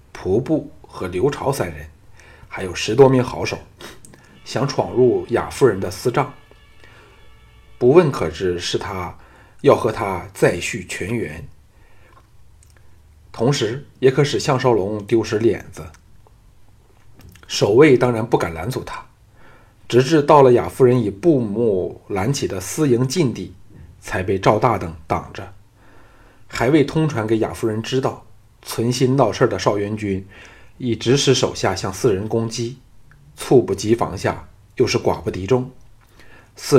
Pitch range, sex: 100-120 Hz, male